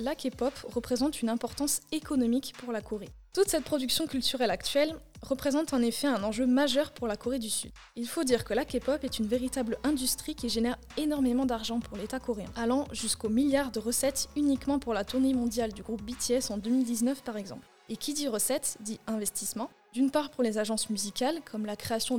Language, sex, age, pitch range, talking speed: French, female, 20-39, 225-270 Hz, 200 wpm